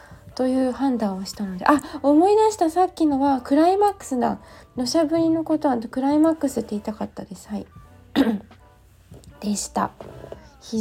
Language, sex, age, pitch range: Japanese, female, 20-39, 205-265 Hz